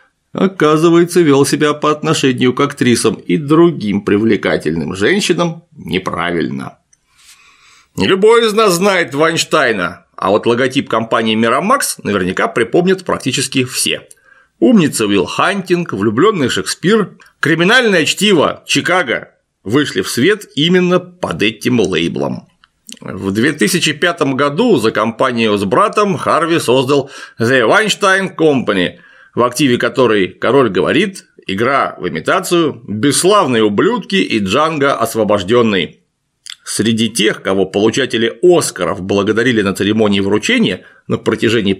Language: Russian